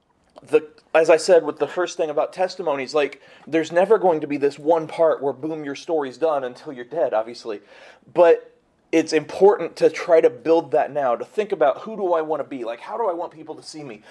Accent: American